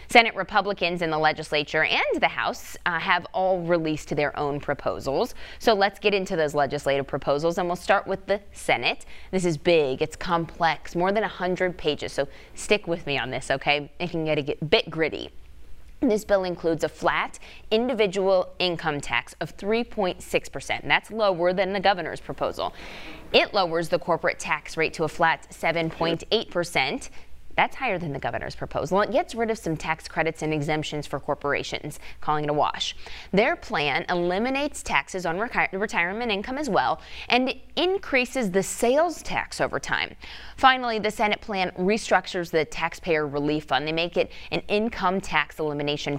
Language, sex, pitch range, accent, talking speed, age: English, female, 155-200 Hz, American, 170 wpm, 20-39